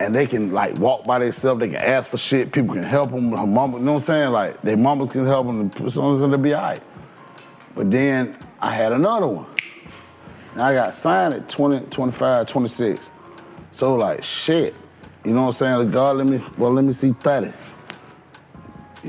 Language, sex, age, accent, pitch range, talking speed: English, male, 30-49, American, 100-135 Hz, 210 wpm